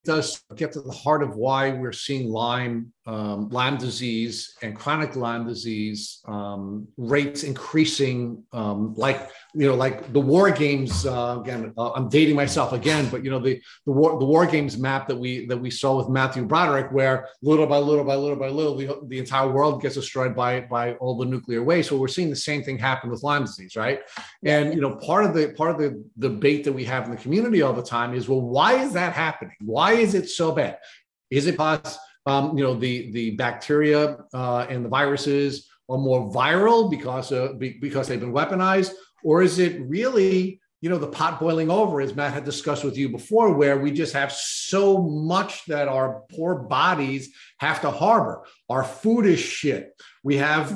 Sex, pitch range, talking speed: male, 130-155 Hz, 205 wpm